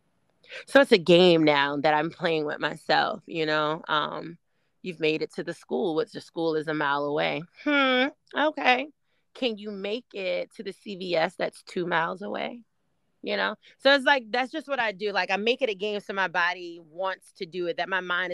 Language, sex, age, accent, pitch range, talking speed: English, female, 30-49, American, 170-220 Hz, 215 wpm